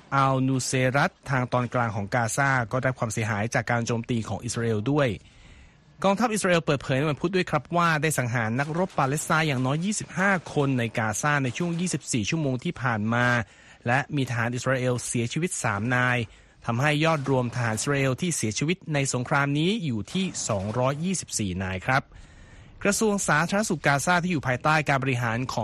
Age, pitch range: 20-39, 120-155 Hz